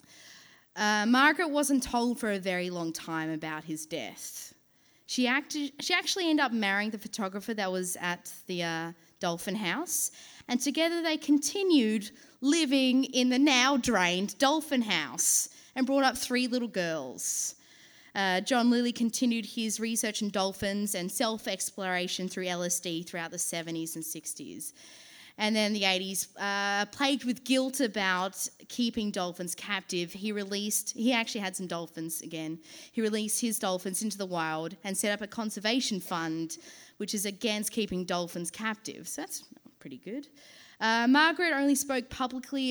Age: 20-39